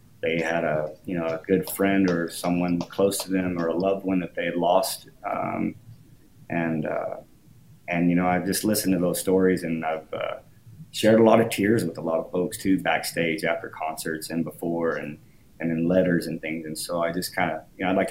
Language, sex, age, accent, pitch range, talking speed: English, male, 30-49, American, 80-95 Hz, 225 wpm